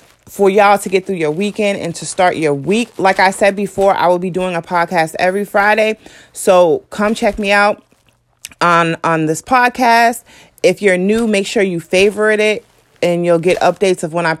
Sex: female